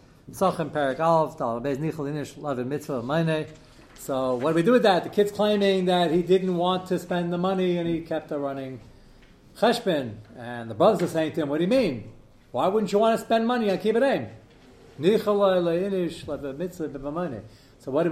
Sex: male